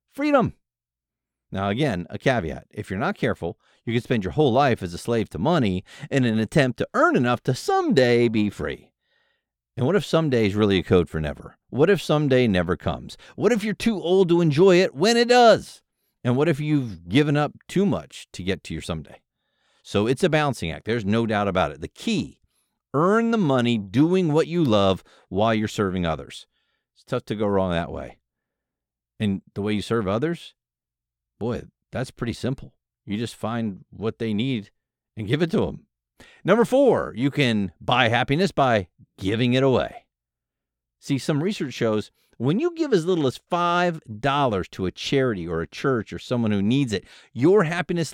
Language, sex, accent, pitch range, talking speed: English, male, American, 95-150 Hz, 190 wpm